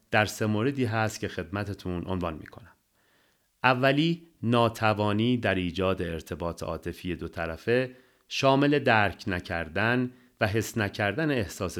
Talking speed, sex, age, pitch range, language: 115 wpm, male, 40-59, 90-125 Hz, Persian